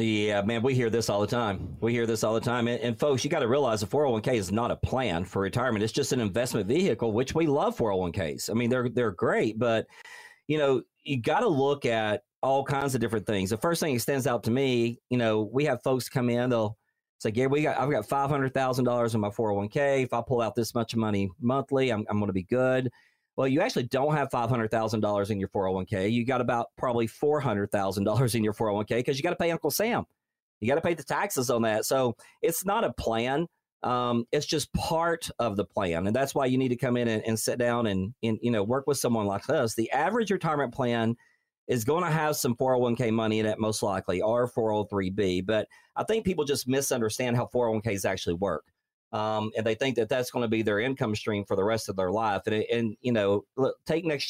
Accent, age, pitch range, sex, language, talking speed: American, 40-59, 110-135 Hz, male, English, 235 wpm